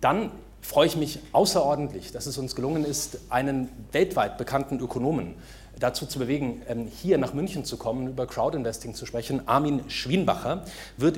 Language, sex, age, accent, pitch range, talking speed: German, male, 30-49, German, 120-150 Hz, 160 wpm